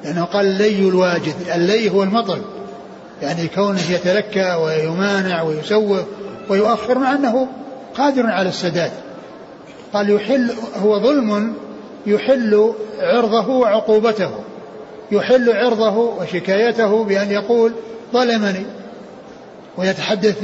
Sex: male